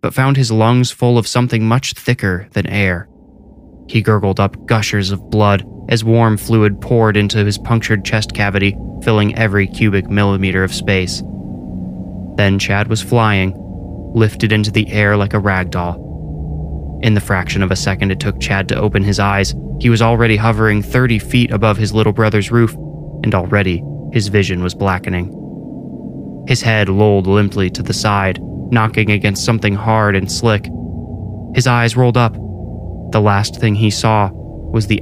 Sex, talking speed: male, 165 wpm